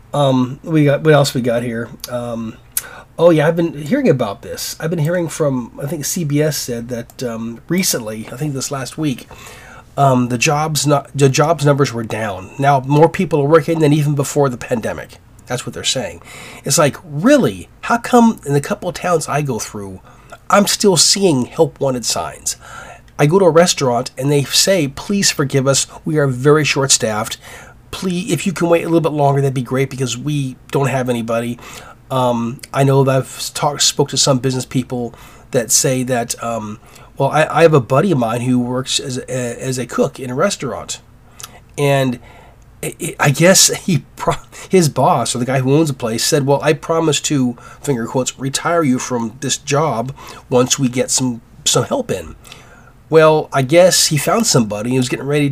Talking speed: 200 wpm